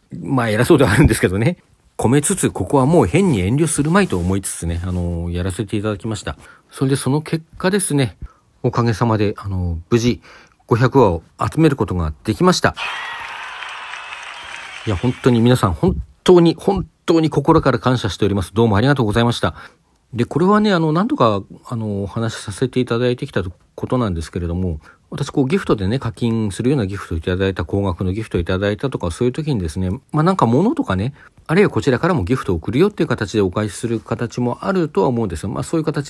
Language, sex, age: Japanese, male, 40-59